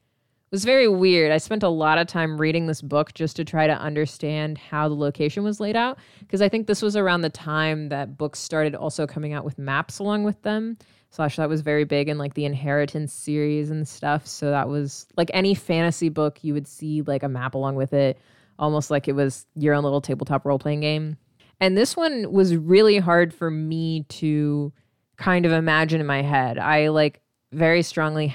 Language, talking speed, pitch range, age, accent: English, 210 wpm, 145-165 Hz, 20-39, American